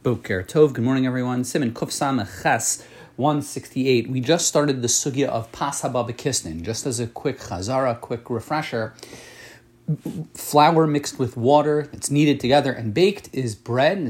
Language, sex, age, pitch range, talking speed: English, male, 30-49, 120-155 Hz, 145 wpm